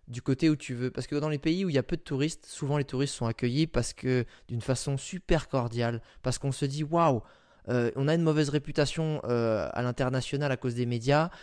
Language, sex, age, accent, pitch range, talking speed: French, male, 20-39, French, 120-145 Hz, 235 wpm